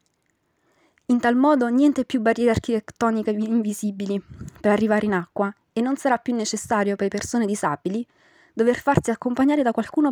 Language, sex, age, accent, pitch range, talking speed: Italian, female, 20-39, native, 195-235 Hz, 155 wpm